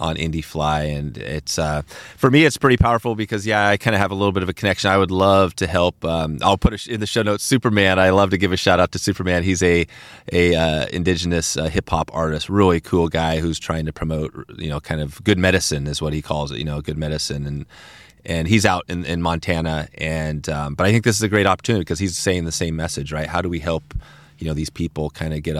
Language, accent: English, American